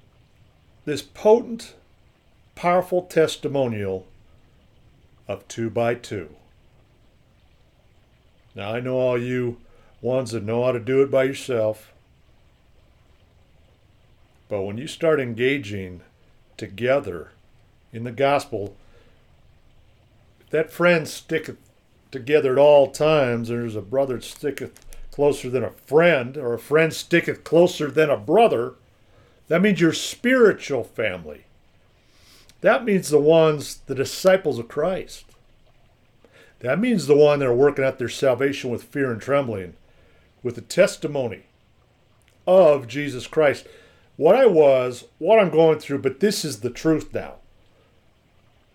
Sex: male